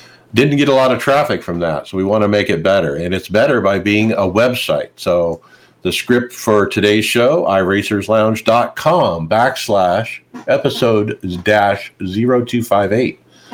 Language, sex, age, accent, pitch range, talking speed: English, male, 50-69, American, 95-110 Hz, 145 wpm